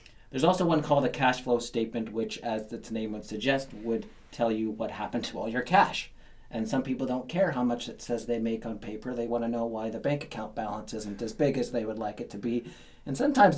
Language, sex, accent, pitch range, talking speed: English, male, American, 115-145 Hz, 250 wpm